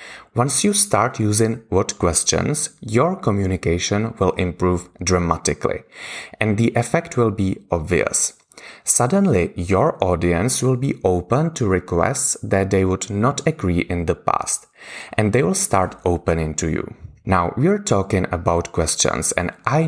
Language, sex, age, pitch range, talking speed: English, male, 30-49, 90-135 Hz, 140 wpm